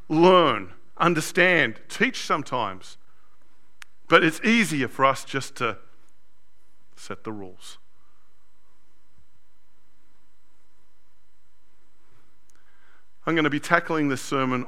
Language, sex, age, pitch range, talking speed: English, male, 50-69, 125-155 Hz, 85 wpm